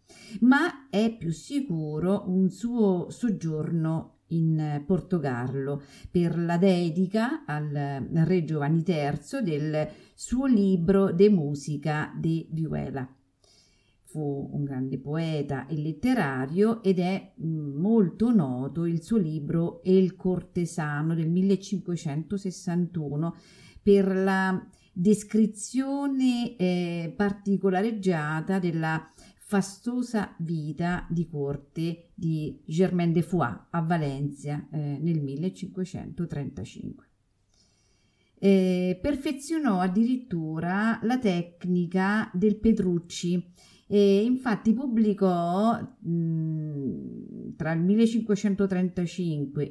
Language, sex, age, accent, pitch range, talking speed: Italian, female, 50-69, native, 155-205 Hz, 85 wpm